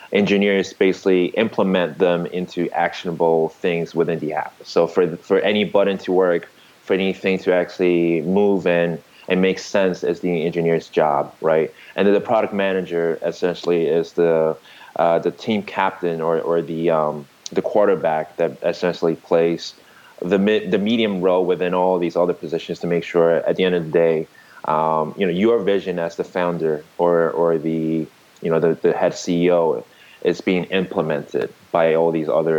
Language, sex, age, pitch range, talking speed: English, male, 20-39, 85-95 Hz, 175 wpm